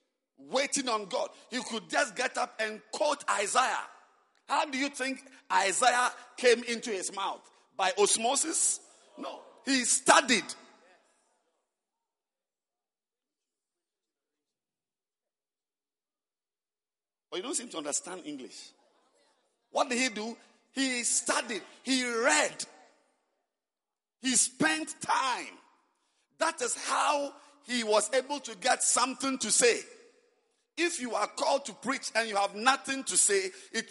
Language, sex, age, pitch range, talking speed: English, male, 50-69, 235-310 Hz, 120 wpm